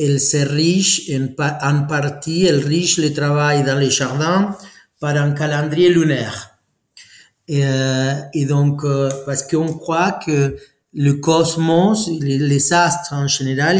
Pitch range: 135-165 Hz